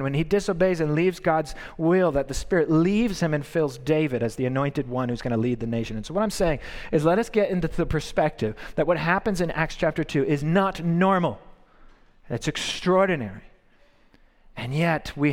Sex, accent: male, American